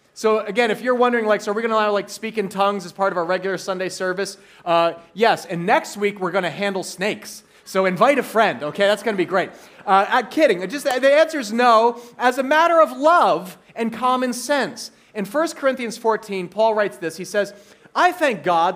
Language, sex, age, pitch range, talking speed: English, male, 30-49, 200-265 Hz, 225 wpm